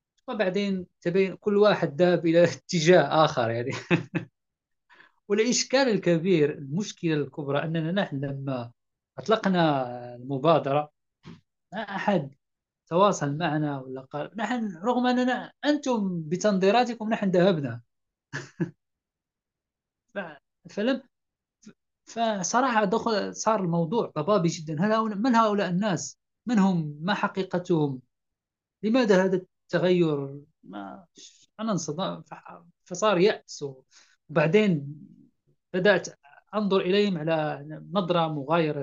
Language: Arabic